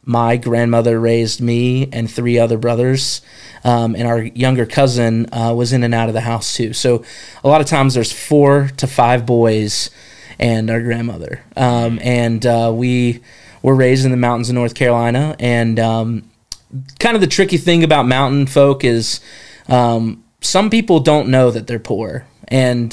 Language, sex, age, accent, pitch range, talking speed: English, male, 20-39, American, 115-130 Hz, 175 wpm